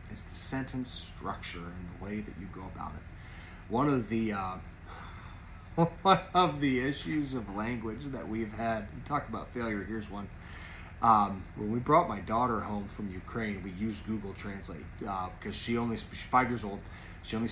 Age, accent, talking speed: 30-49, American, 180 wpm